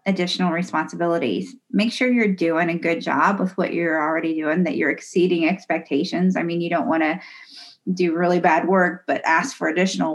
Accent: American